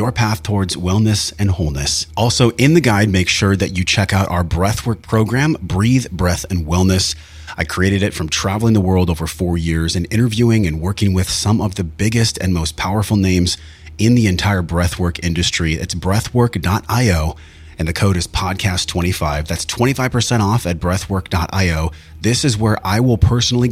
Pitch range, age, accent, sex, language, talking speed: 80-105 Hz, 30-49, American, male, English, 175 wpm